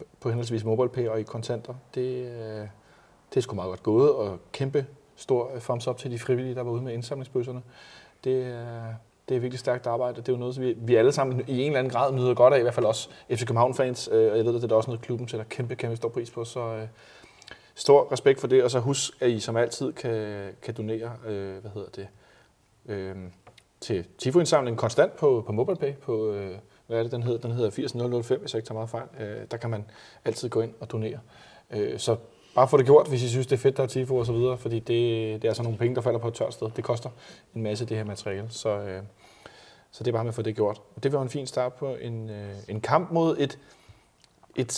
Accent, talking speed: native, 240 wpm